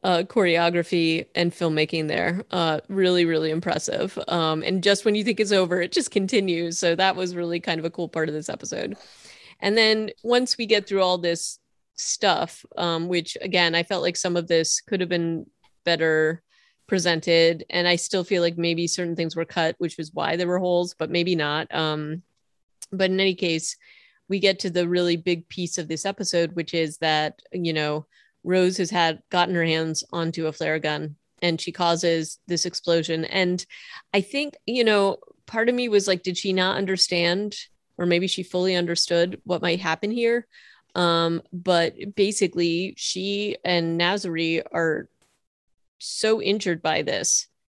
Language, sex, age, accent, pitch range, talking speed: English, female, 30-49, American, 165-190 Hz, 180 wpm